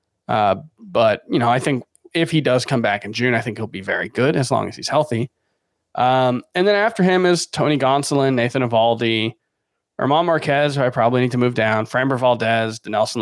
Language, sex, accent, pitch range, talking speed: English, male, American, 115-145 Hz, 210 wpm